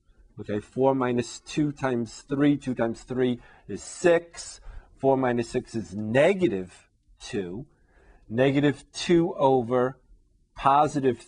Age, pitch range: 50-69, 105-145 Hz